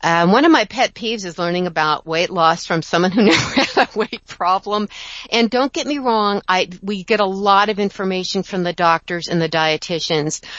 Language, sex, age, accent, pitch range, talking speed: English, female, 50-69, American, 165-200 Hz, 210 wpm